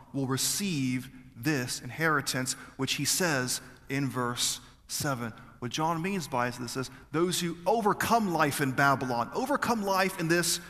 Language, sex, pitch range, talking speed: English, male, 140-215 Hz, 145 wpm